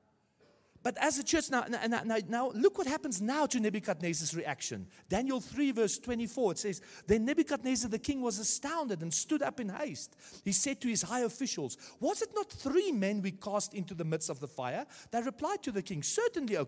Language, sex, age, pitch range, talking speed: English, male, 40-59, 175-275 Hz, 205 wpm